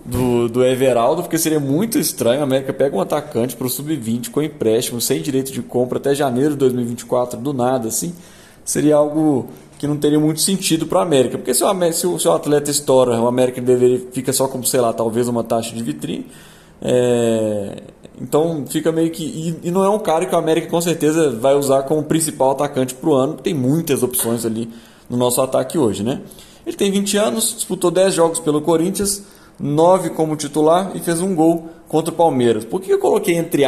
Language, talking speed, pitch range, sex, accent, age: Portuguese, 210 wpm, 125-165 Hz, male, Brazilian, 20-39